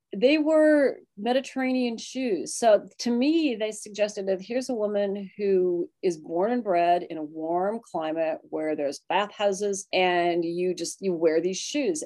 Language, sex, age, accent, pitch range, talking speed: English, female, 40-59, American, 175-225 Hz, 160 wpm